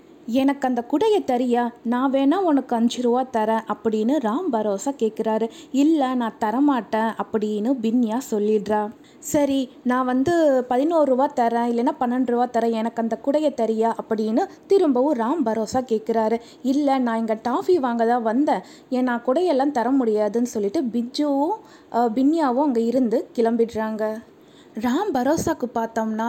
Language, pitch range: Tamil, 230-295 Hz